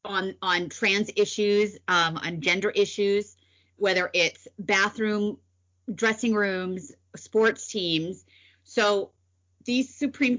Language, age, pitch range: English, 30-49, 150-220 Hz